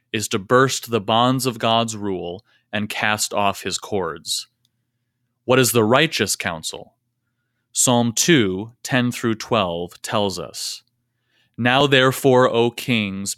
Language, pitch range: English, 105-125 Hz